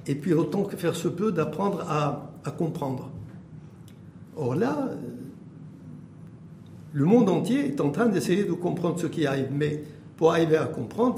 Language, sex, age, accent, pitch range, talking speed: French, male, 60-79, French, 140-180 Hz, 160 wpm